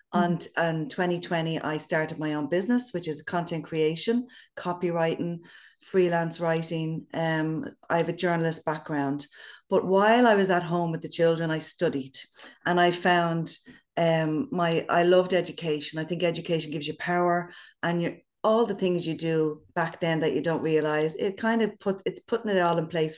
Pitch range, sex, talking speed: 160-185 Hz, female, 180 wpm